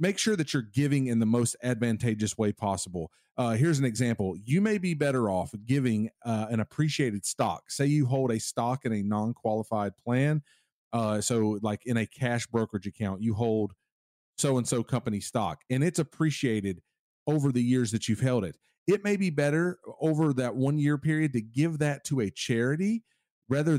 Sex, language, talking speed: male, English, 180 wpm